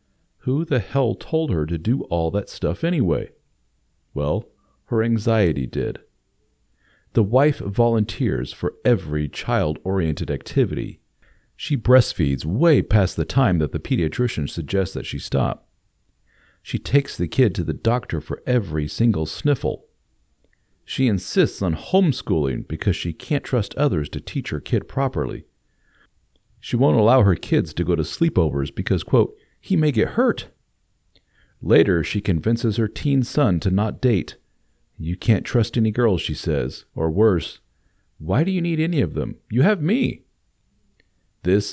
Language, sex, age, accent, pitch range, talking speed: English, male, 50-69, American, 85-120 Hz, 150 wpm